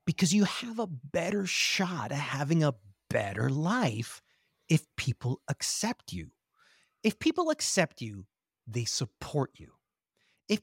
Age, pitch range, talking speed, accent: 30-49, 135-210 Hz, 130 wpm, American